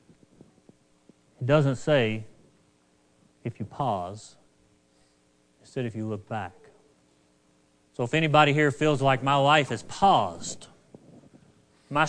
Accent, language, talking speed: American, English, 110 wpm